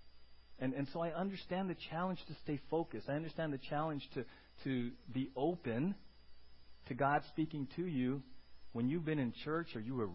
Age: 40-59